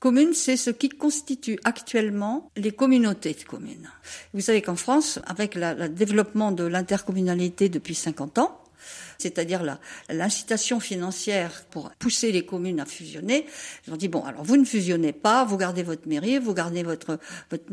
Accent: French